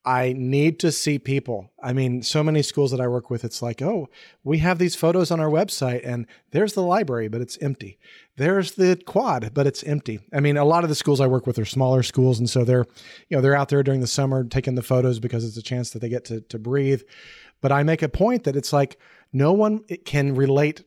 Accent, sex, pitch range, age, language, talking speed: American, male, 125-150 Hz, 40-59, English, 245 wpm